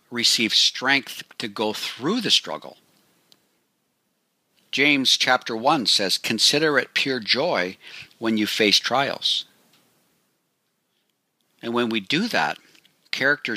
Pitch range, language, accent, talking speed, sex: 110-165 Hz, English, American, 110 wpm, male